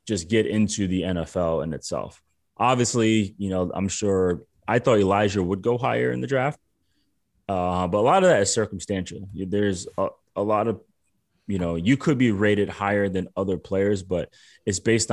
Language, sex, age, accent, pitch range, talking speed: English, male, 20-39, American, 90-105 Hz, 185 wpm